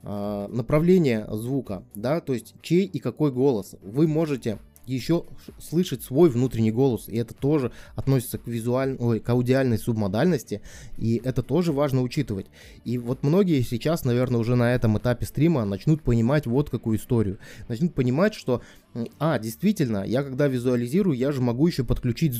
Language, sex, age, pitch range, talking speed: Russian, male, 20-39, 110-140 Hz, 155 wpm